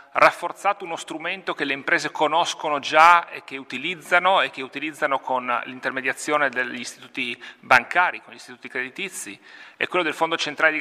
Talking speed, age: 160 wpm, 40-59